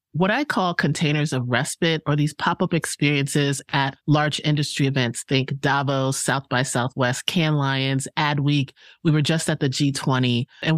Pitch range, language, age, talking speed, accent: 135-170 Hz, English, 30-49, 165 wpm, American